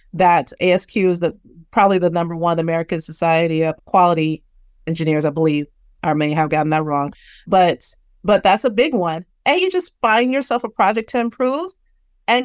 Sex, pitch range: female, 175-230 Hz